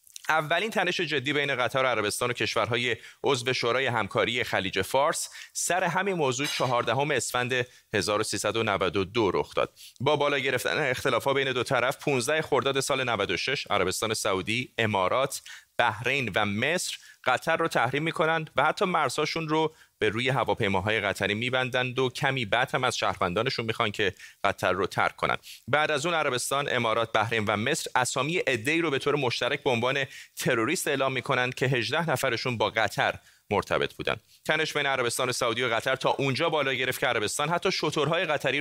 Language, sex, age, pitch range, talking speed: Persian, male, 30-49, 115-150 Hz, 165 wpm